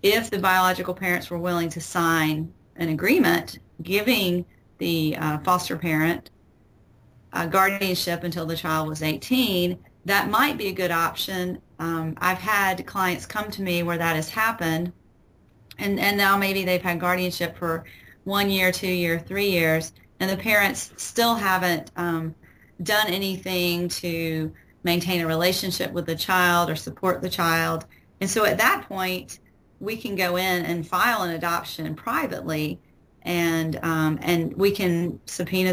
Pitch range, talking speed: 165-190 Hz, 155 wpm